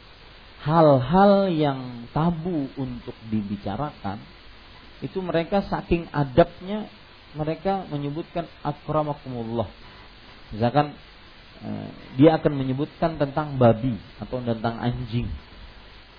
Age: 40-59